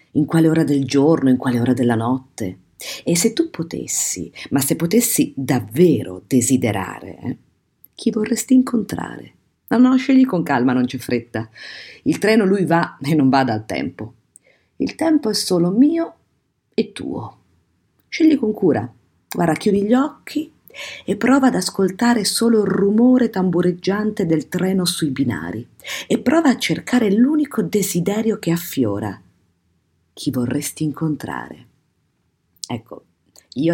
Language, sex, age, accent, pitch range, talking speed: Italian, female, 50-69, native, 115-185 Hz, 140 wpm